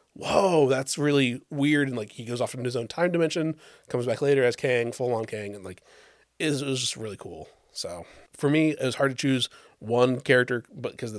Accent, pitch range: American, 115-140 Hz